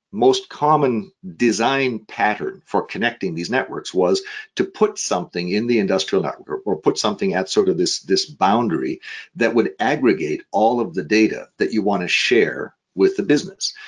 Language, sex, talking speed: English, male, 175 wpm